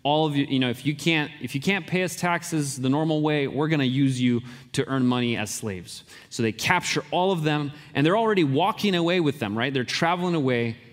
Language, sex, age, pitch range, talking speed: English, male, 30-49, 125-155 Hz, 235 wpm